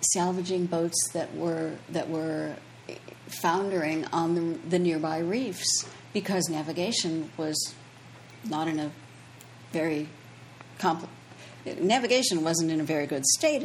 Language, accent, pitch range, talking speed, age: English, American, 165-210 Hz, 120 wpm, 60-79